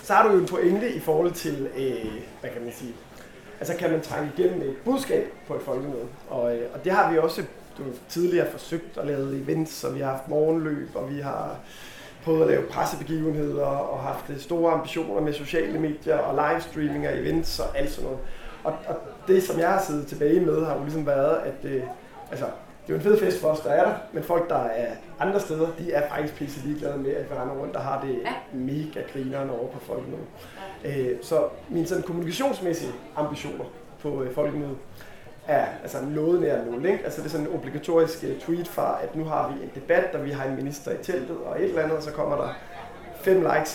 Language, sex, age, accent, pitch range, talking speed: Danish, male, 30-49, native, 145-170 Hz, 215 wpm